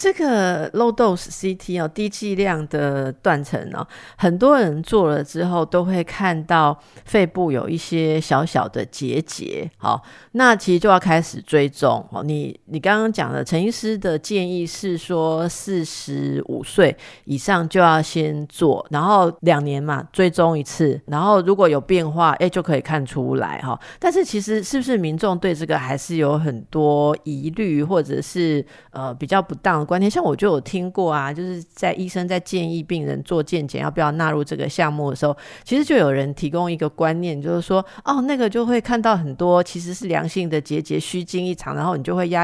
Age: 50-69